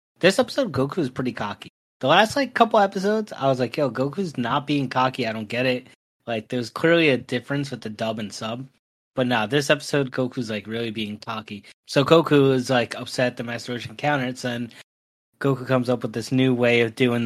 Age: 20-39